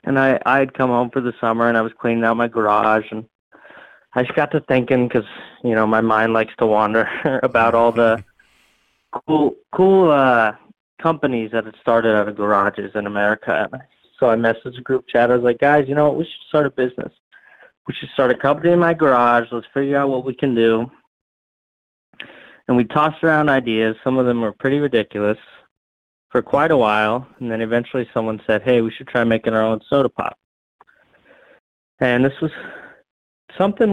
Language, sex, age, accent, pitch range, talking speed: English, male, 20-39, American, 115-135 Hz, 195 wpm